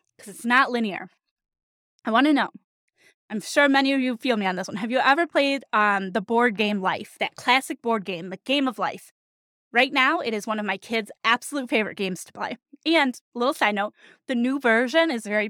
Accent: American